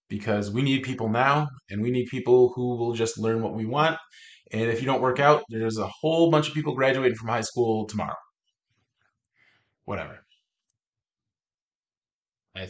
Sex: male